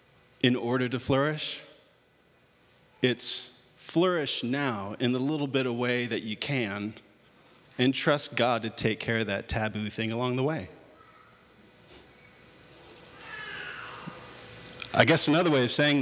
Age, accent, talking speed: 30-49, American, 130 wpm